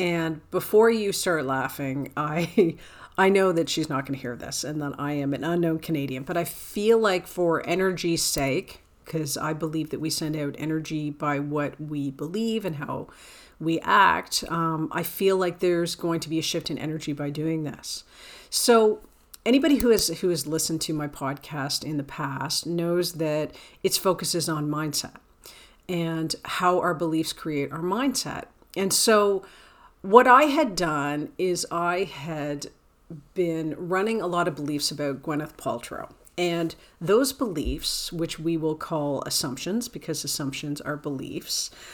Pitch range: 150-185 Hz